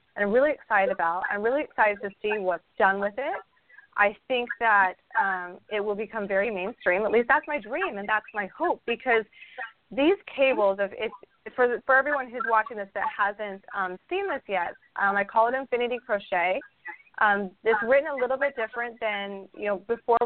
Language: English